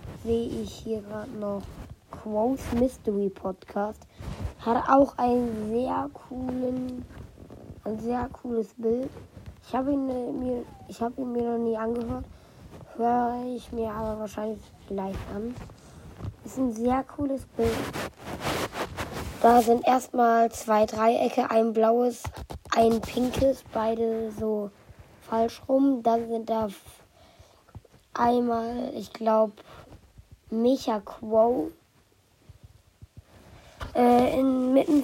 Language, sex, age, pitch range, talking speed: German, female, 20-39, 220-250 Hz, 110 wpm